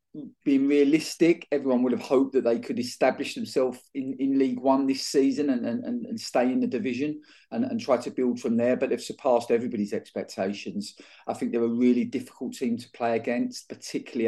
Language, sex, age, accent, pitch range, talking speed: English, male, 40-59, British, 120-140 Hz, 200 wpm